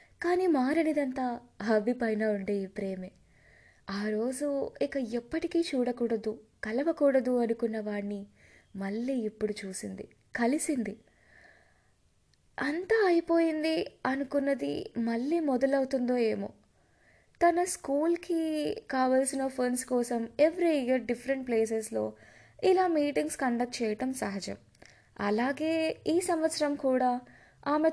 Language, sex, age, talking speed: Telugu, female, 20-39, 90 wpm